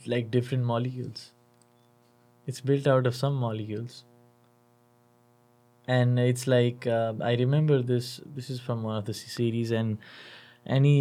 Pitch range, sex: 115-125 Hz, male